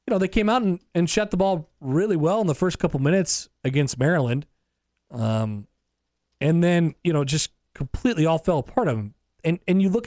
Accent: American